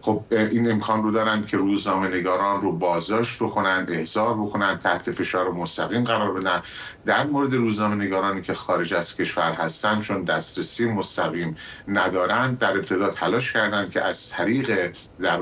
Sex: male